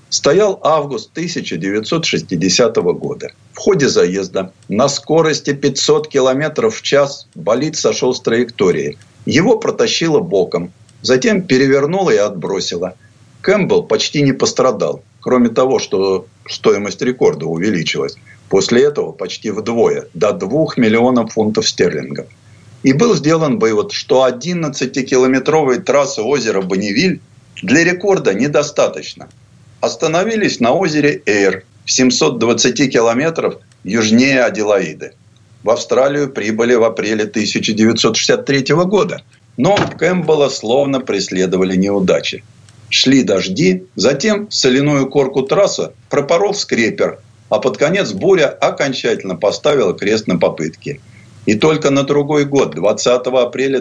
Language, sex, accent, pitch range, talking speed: Russian, male, native, 110-150 Hz, 115 wpm